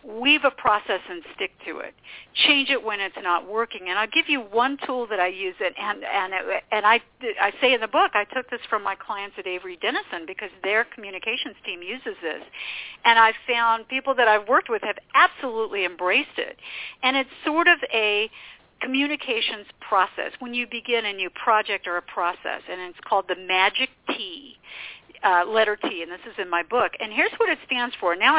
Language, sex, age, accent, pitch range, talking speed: English, female, 50-69, American, 195-275 Hz, 205 wpm